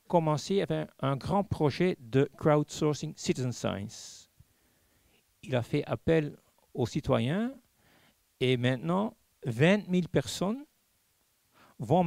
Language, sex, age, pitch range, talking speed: French, male, 60-79, 125-175 Hz, 105 wpm